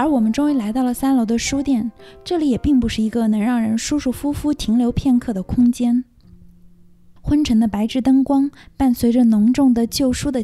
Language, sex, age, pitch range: Chinese, female, 20-39, 200-270 Hz